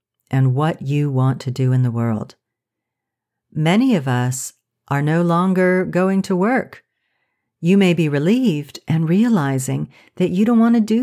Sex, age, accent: female, 50-69, American